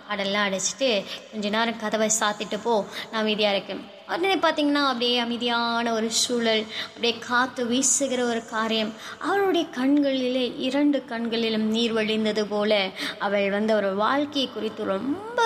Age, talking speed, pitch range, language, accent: 20-39, 130 wpm, 220-295 Hz, Tamil, native